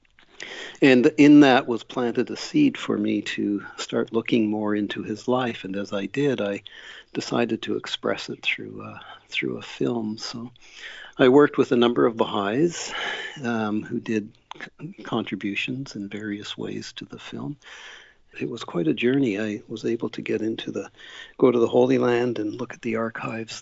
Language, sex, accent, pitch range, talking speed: English, male, American, 105-125 Hz, 180 wpm